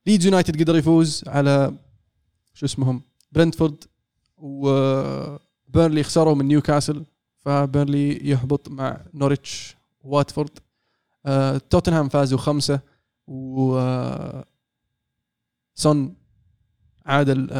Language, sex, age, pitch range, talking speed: Arabic, male, 20-39, 130-150 Hz, 80 wpm